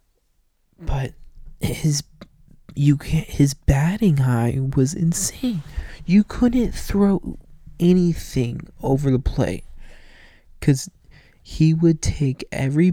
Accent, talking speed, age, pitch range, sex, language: American, 95 wpm, 20-39, 135-190 Hz, male, English